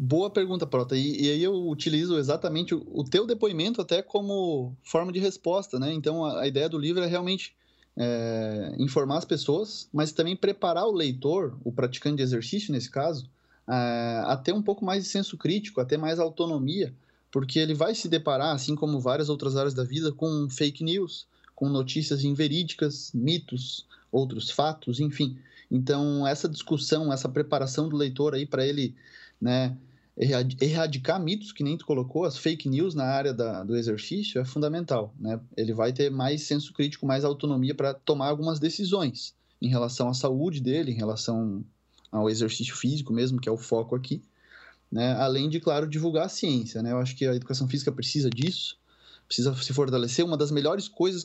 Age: 20-39